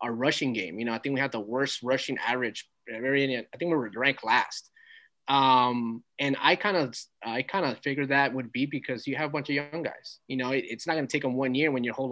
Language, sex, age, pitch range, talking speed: English, male, 20-39, 120-140 Hz, 255 wpm